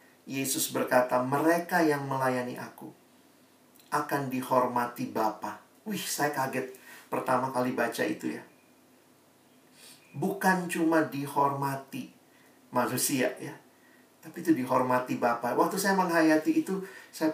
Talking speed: 105 wpm